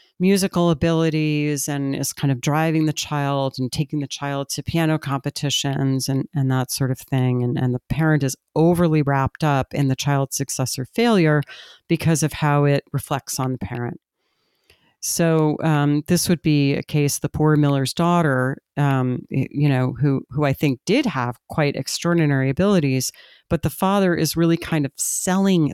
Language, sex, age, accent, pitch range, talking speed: English, female, 40-59, American, 135-170 Hz, 175 wpm